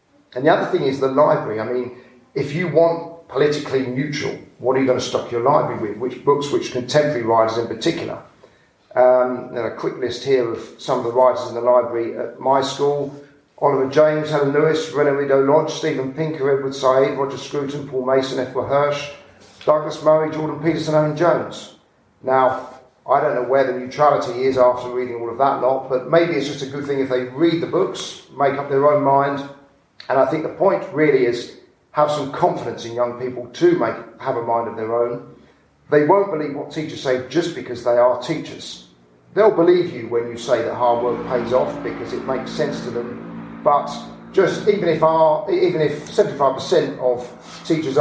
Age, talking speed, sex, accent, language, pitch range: 40-59, 200 wpm, male, British, English, 125-155 Hz